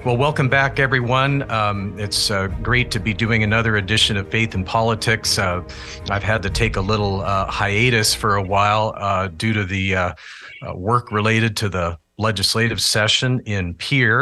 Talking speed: 180 wpm